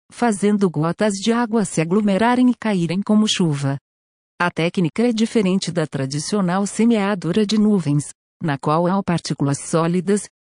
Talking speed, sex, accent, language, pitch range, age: 140 wpm, female, Brazilian, Portuguese, 155-215 Hz, 50-69